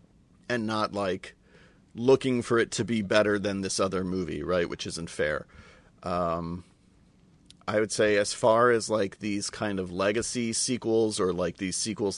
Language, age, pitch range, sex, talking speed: English, 40-59, 90-110 Hz, male, 170 wpm